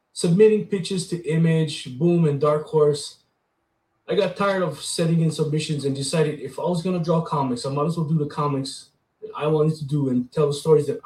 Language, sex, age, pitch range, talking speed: English, male, 20-39, 145-185 Hz, 220 wpm